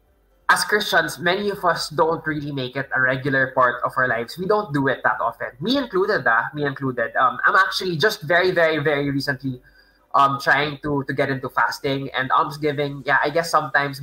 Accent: native